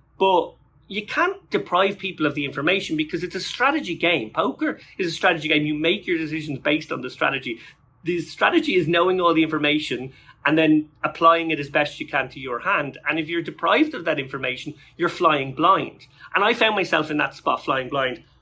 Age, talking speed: 30-49, 205 wpm